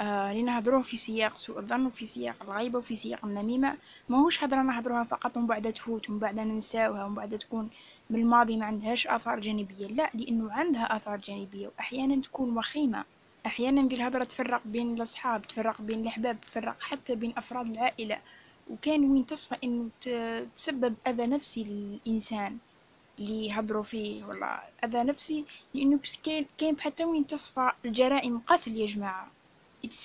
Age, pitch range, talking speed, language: 20-39, 225-260 Hz, 160 wpm, Arabic